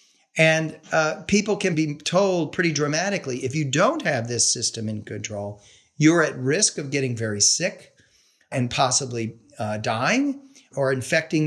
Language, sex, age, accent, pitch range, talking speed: English, male, 40-59, American, 130-160 Hz, 150 wpm